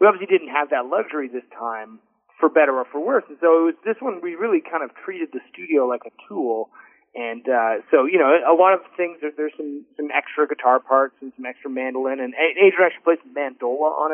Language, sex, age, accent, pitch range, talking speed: English, male, 30-49, American, 130-185 Hz, 235 wpm